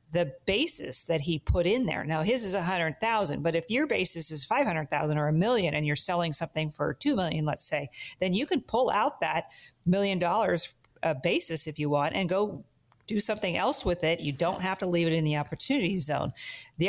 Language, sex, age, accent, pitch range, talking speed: English, female, 40-59, American, 155-185 Hz, 225 wpm